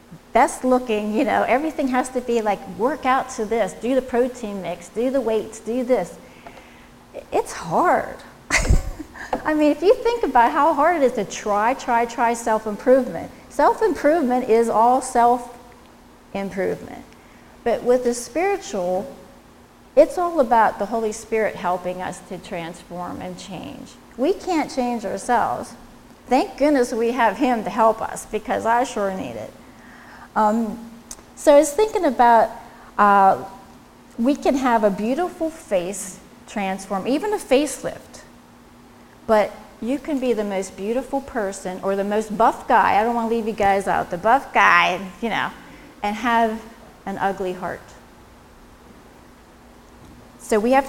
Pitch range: 205-260 Hz